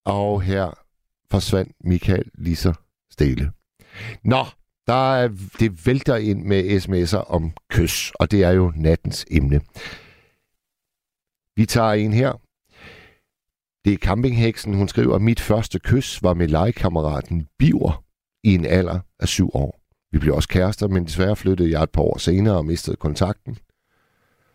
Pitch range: 85-105 Hz